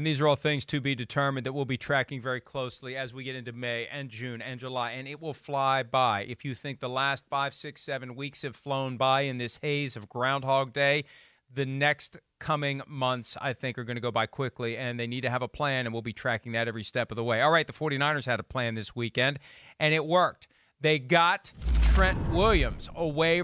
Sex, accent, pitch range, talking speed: male, American, 130-195 Hz, 235 wpm